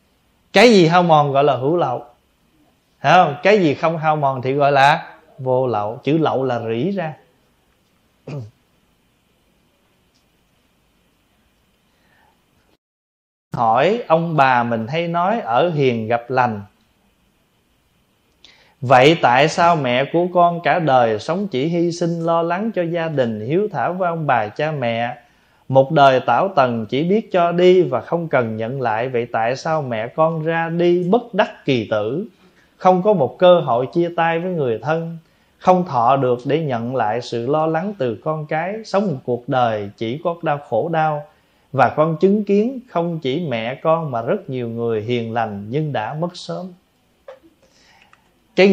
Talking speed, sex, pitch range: 165 wpm, male, 125-170 Hz